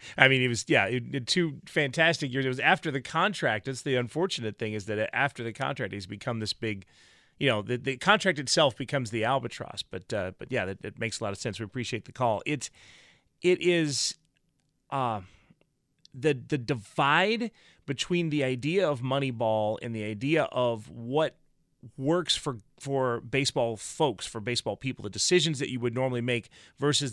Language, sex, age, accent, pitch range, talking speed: English, male, 30-49, American, 120-155 Hz, 190 wpm